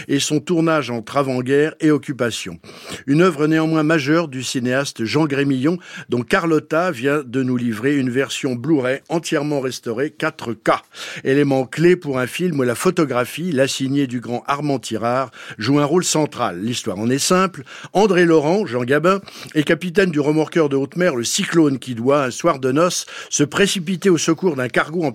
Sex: male